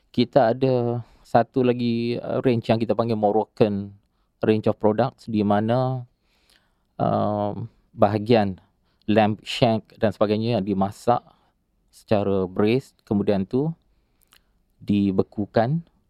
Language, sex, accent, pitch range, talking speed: English, male, Indonesian, 105-120 Hz, 100 wpm